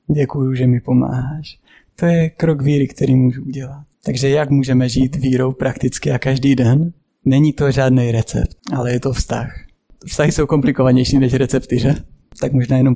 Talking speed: 170 wpm